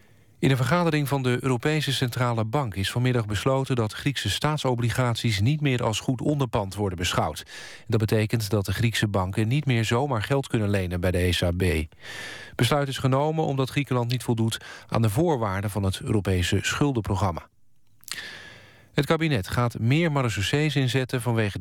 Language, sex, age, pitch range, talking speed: Dutch, male, 40-59, 105-130 Hz, 160 wpm